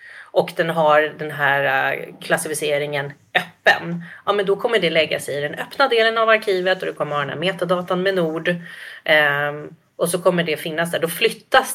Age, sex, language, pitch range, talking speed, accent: 30-49, female, Swedish, 155-195 Hz, 175 wpm, native